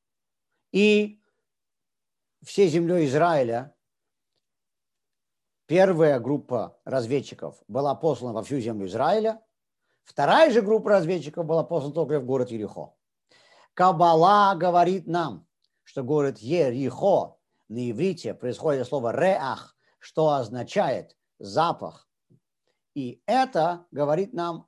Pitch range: 140-190 Hz